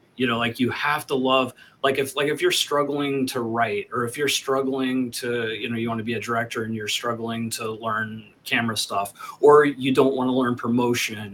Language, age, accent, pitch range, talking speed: English, 30-49, American, 120-145 Hz, 220 wpm